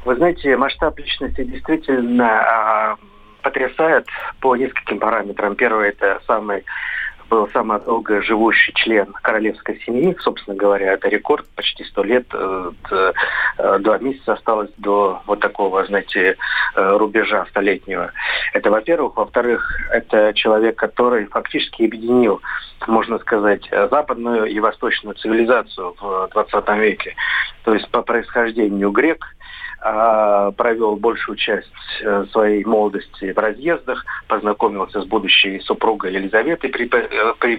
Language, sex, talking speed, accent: Russian, male, 115 wpm, native